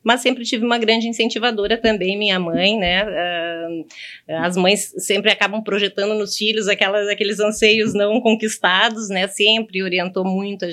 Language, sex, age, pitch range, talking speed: Portuguese, female, 30-49, 180-210 Hz, 155 wpm